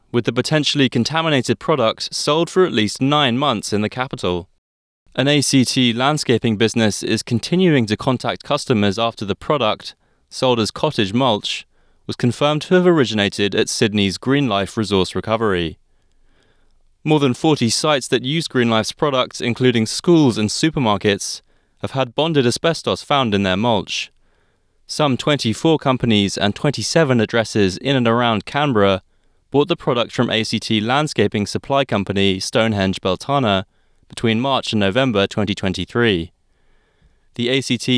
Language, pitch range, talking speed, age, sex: English, 100-135 Hz, 135 wpm, 20-39, male